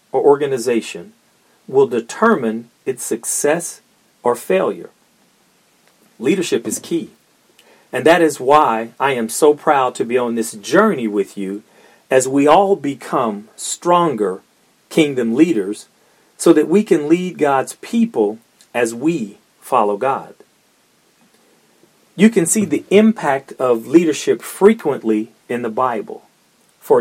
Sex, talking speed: male, 125 wpm